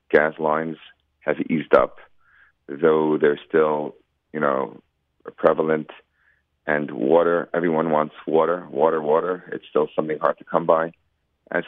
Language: English